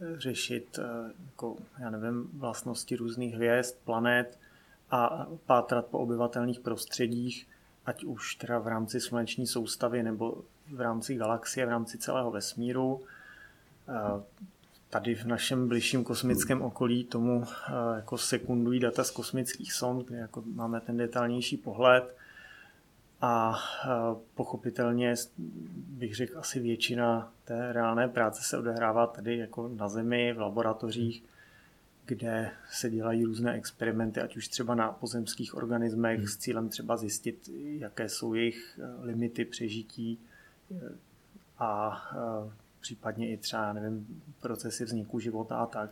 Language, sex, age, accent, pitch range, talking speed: Czech, male, 30-49, native, 115-125 Hz, 125 wpm